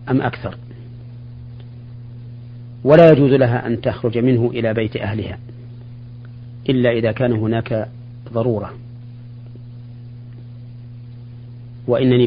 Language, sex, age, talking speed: Arabic, male, 40-59, 85 wpm